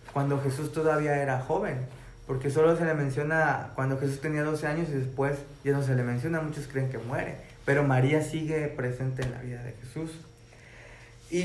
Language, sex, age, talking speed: Spanish, male, 20-39, 190 wpm